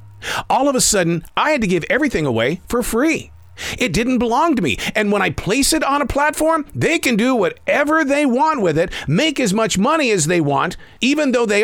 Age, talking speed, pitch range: 50-69, 220 wpm, 165-245 Hz